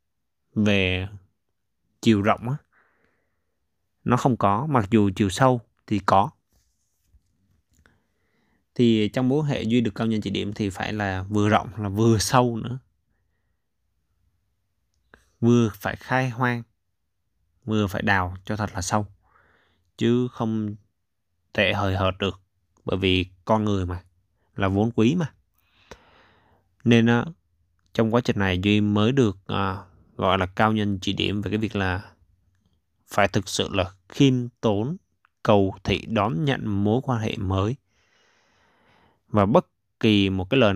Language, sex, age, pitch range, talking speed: Vietnamese, male, 20-39, 95-110 Hz, 145 wpm